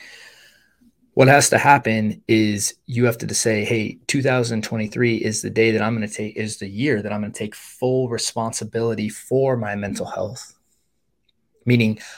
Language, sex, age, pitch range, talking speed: English, male, 20-39, 105-120 Hz, 170 wpm